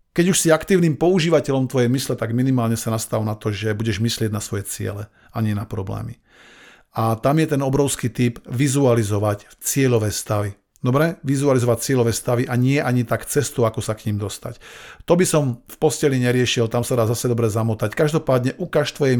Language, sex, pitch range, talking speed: Slovak, male, 115-145 Hz, 190 wpm